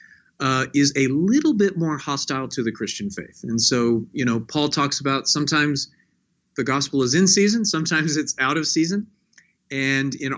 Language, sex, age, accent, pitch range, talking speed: English, male, 40-59, American, 125-165 Hz, 180 wpm